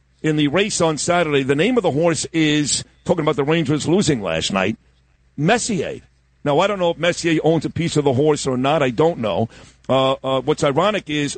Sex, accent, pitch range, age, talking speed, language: male, American, 140-170 Hz, 50-69, 215 wpm, English